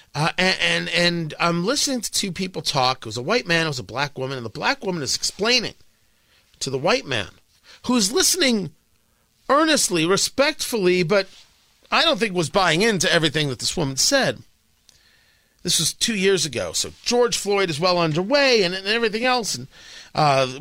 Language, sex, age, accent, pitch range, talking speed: English, male, 40-59, American, 145-230 Hz, 185 wpm